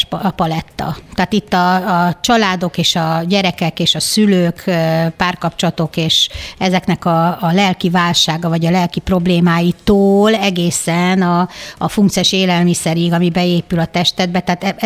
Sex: female